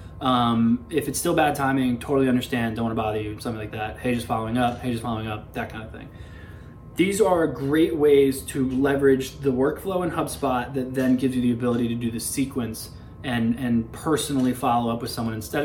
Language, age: English, 20-39